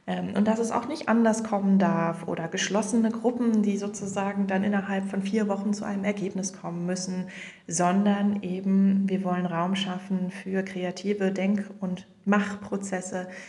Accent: German